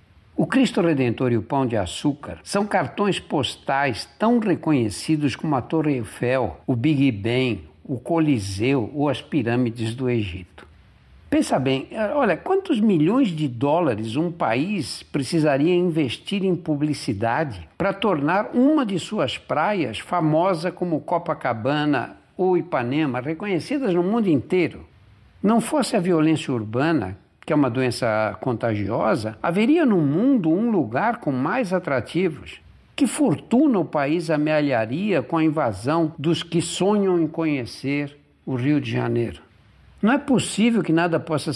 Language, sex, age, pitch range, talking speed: Portuguese, male, 60-79, 130-195 Hz, 140 wpm